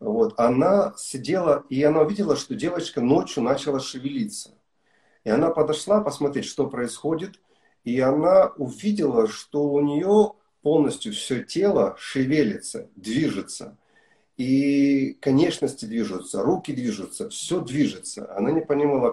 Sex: male